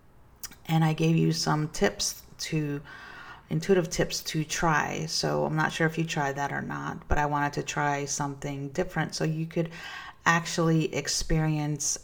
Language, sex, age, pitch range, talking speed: English, female, 30-49, 145-165 Hz, 165 wpm